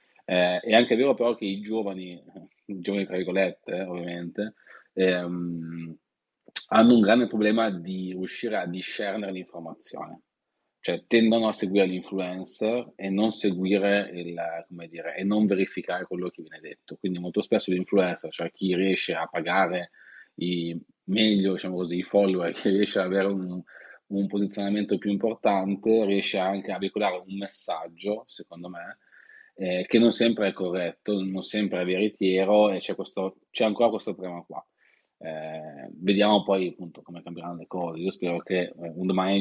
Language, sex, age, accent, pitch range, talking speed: Italian, male, 30-49, native, 90-100 Hz, 160 wpm